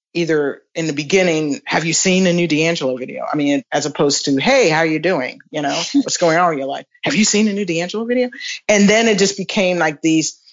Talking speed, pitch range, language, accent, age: 245 wpm, 160-205 Hz, English, American, 40-59